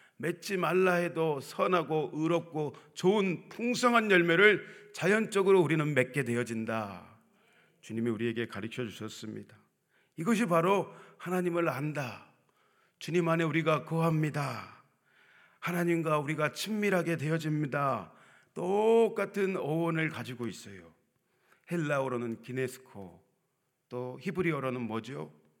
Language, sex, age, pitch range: Korean, male, 40-59, 125-170 Hz